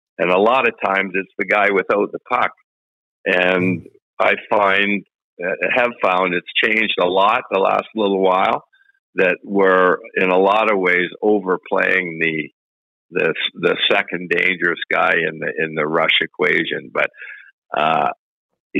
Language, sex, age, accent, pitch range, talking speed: English, male, 50-69, American, 90-125 Hz, 150 wpm